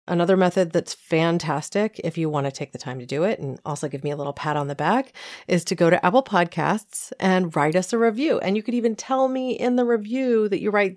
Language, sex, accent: English, female, American